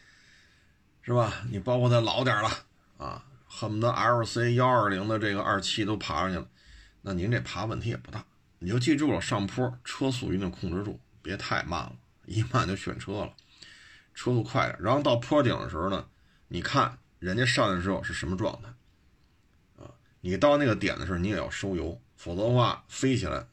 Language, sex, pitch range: Chinese, male, 95-120 Hz